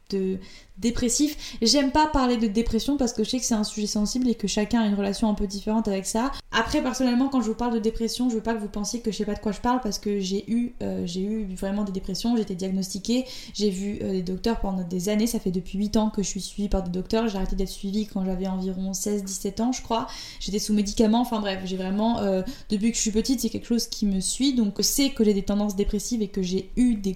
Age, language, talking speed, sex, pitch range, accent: 20-39, French, 265 wpm, female, 200-240 Hz, French